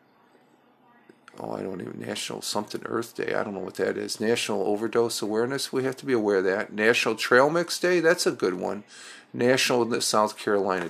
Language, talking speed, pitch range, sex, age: English, 200 wpm, 95-120 Hz, male, 50-69